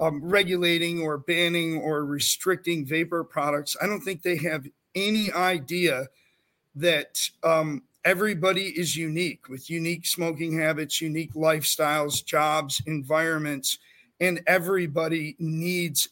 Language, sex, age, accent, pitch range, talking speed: English, male, 40-59, American, 150-175 Hz, 115 wpm